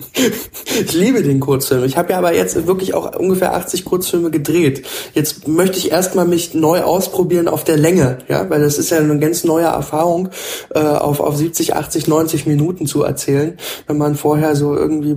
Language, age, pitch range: German, 20-39, 150-230 Hz